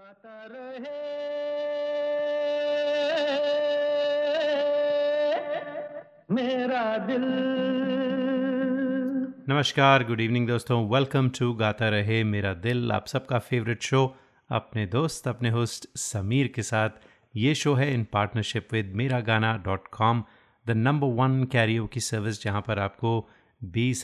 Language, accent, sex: Hindi, native, male